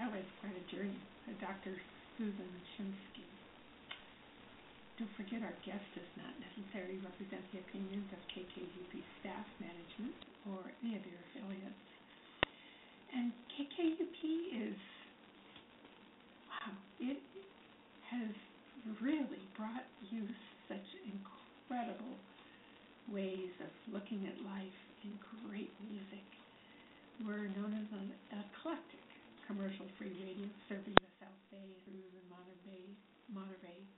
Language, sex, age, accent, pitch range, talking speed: English, female, 60-79, American, 195-235 Hz, 110 wpm